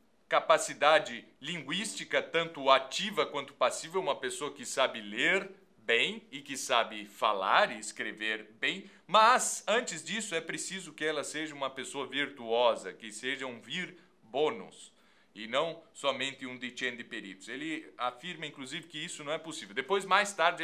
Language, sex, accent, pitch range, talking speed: Portuguese, male, Brazilian, 125-165 Hz, 150 wpm